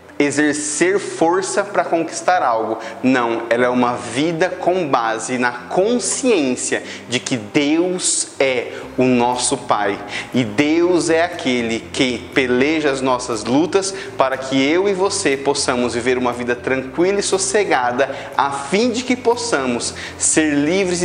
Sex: male